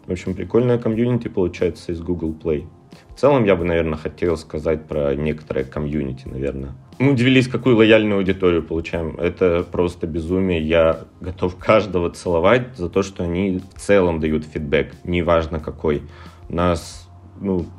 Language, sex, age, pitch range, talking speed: Russian, male, 30-49, 80-95 Hz, 150 wpm